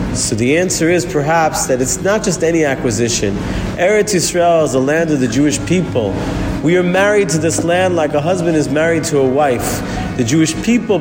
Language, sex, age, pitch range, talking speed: English, male, 40-59, 140-180 Hz, 200 wpm